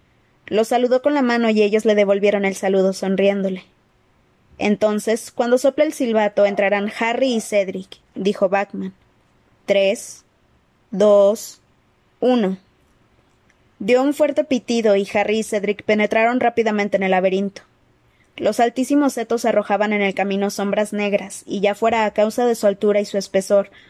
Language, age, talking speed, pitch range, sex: Spanish, 20-39, 150 wpm, 195-225 Hz, female